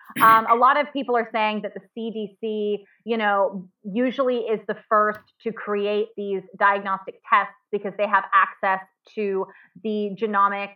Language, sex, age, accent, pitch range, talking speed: English, female, 20-39, American, 195-225 Hz, 155 wpm